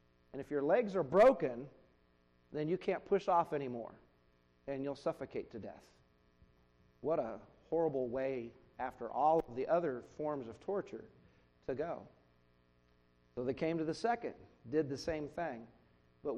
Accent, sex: American, male